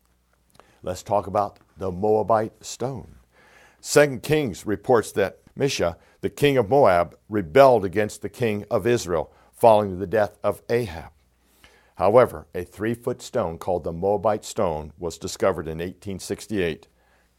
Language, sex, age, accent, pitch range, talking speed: English, male, 60-79, American, 85-125 Hz, 130 wpm